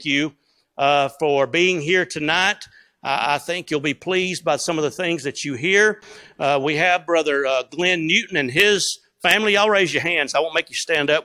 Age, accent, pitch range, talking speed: 50-69, American, 150-195 Hz, 215 wpm